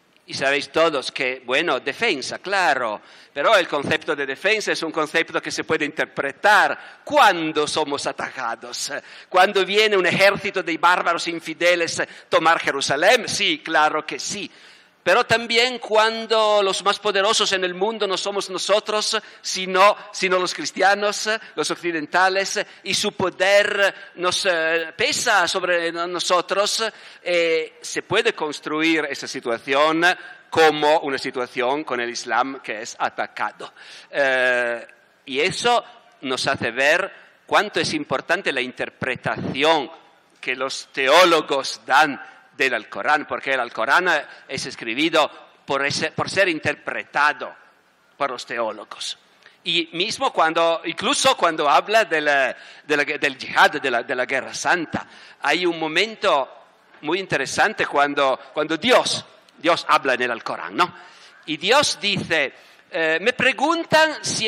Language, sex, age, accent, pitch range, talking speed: Italian, male, 50-69, native, 160-210 Hz, 135 wpm